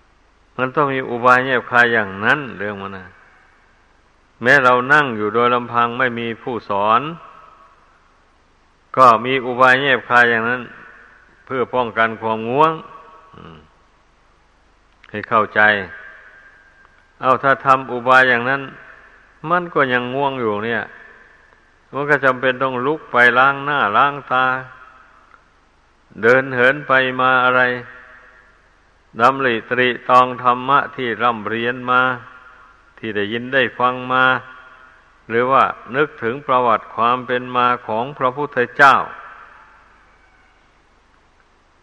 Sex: male